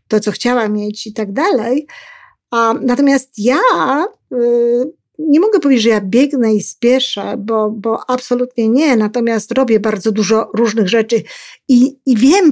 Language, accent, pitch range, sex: Polish, native, 215-255 Hz, female